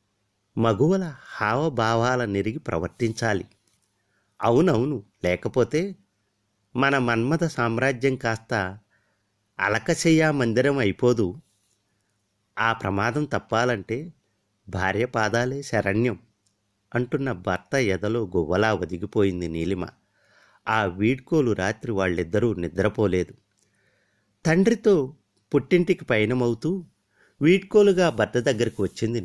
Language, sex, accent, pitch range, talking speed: Telugu, male, native, 100-130 Hz, 75 wpm